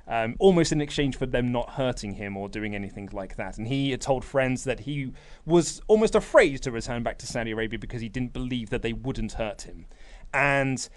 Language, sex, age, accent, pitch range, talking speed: English, male, 30-49, British, 120-155 Hz, 220 wpm